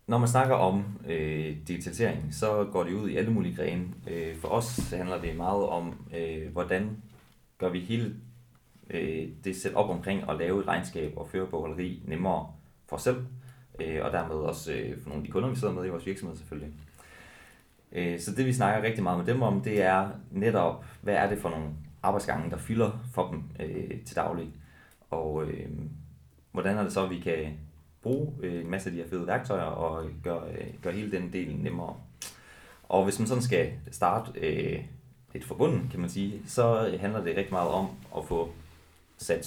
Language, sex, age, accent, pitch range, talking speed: Danish, male, 30-49, native, 80-105 Hz, 195 wpm